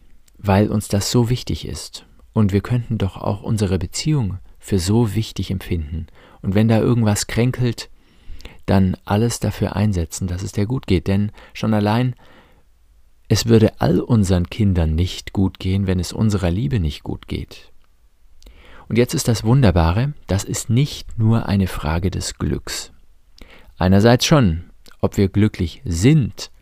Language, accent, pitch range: German, German, 90-115 Hz